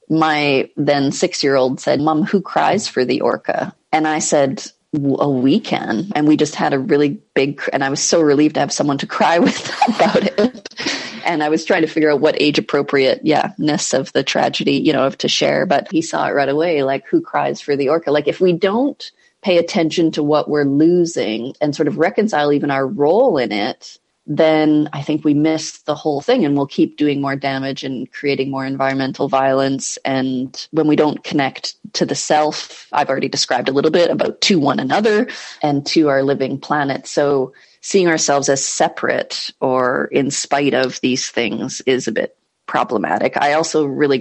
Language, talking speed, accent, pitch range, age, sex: English, 195 wpm, American, 135-155 Hz, 30-49, female